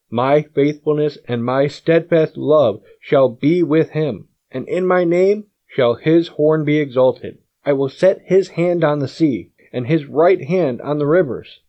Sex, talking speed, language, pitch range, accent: male, 175 wpm, English, 125-160 Hz, American